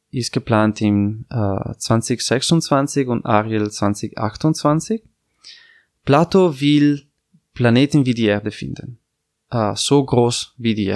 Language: German